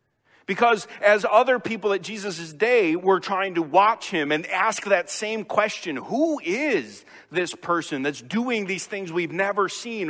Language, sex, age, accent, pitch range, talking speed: English, male, 40-59, American, 145-205 Hz, 165 wpm